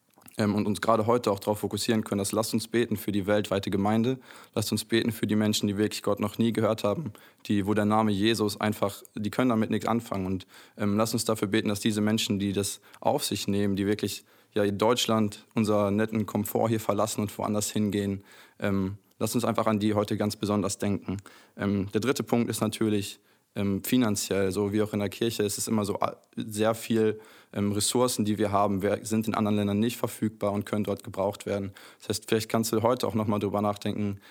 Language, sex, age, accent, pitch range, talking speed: German, male, 20-39, German, 100-110 Hz, 215 wpm